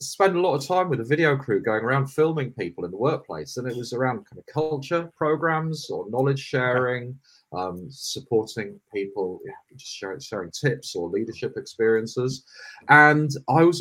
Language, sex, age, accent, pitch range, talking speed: English, male, 40-59, British, 115-150 Hz, 185 wpm